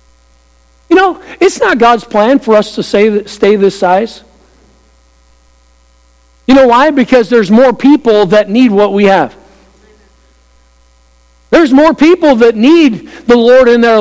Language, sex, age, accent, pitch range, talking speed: English, male, 50-69, American, 215-280 Hz, 140 wpm